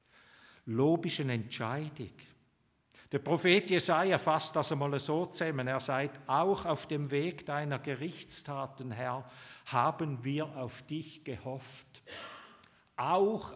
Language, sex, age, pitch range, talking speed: German, male, 50-69, 125-160 Hz, 115 wpm